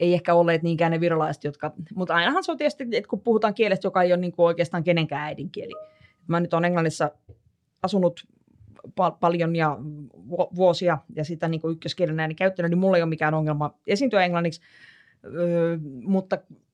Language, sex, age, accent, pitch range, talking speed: Finnish, female, 20-39, native, 155-185 Hz, 170 wpm